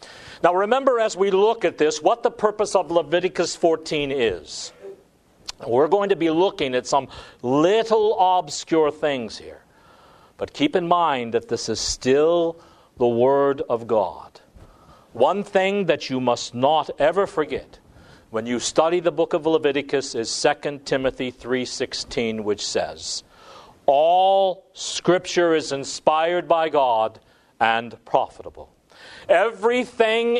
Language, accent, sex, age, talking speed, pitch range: English, American, male, 50-69, 130 wpm, 125-190 Hz